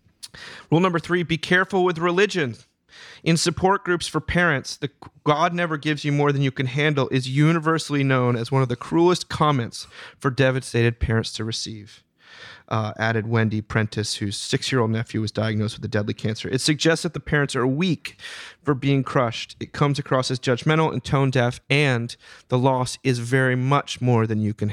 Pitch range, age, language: 115-155 Hz, 30-49, English